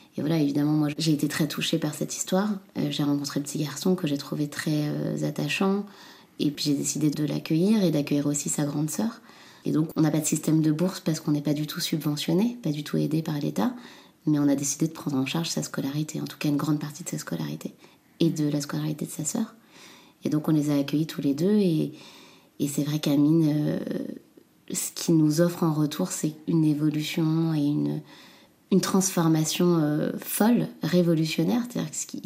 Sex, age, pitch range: female, 20-39, 145-170 Hz